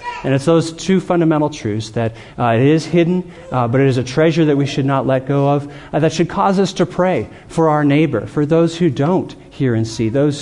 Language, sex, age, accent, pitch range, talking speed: English, male, 40-59, American, 115-155 Hz, 240 wpm